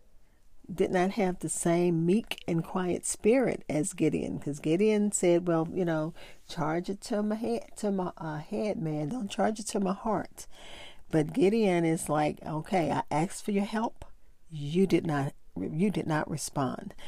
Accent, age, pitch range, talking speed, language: American, 40-59, 160-205 Hz, 175 wpm, English